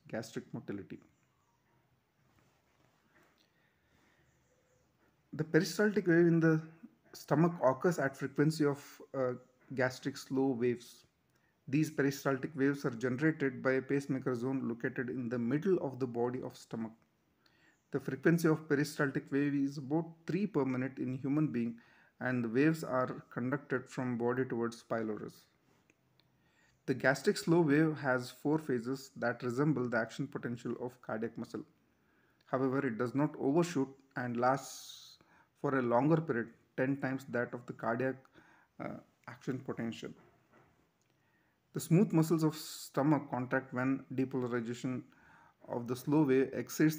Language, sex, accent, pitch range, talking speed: English, male, Indian, 125-150 Hz, 135 wpm